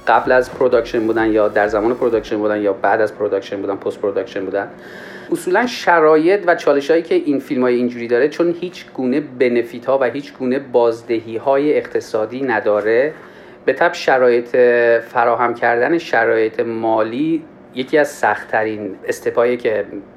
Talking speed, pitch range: 155 wpm, 115-160 Hz